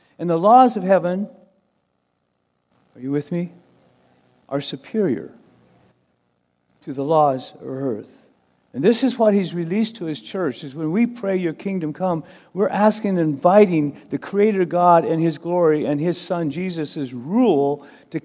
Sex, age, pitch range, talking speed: male, 50-69, 170-215 Hz, 160 wpm